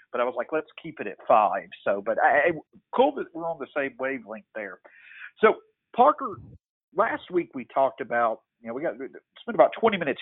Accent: American